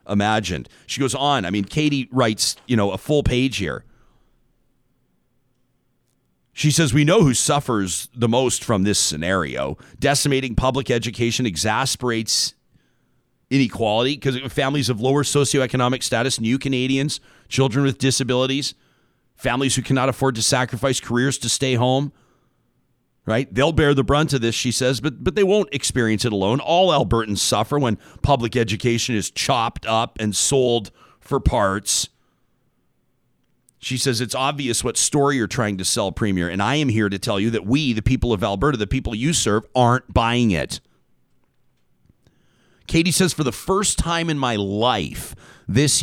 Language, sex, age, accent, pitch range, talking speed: English, male, 40-59, American, 110-135 Hz, 160 wpm